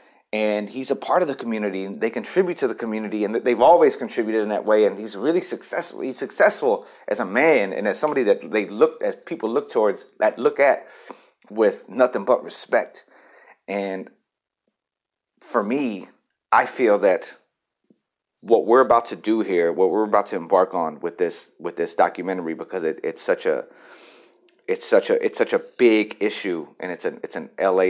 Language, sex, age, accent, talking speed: English, male, 40-59, American, 185 wpm